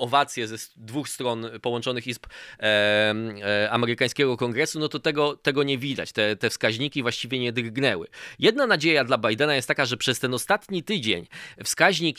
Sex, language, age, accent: male, Polish, 20-39, native